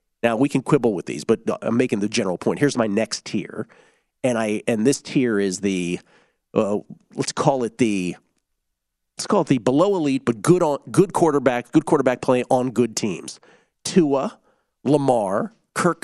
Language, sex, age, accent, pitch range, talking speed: English, male, 40-59, American, 120-150 Hz, 180 wpm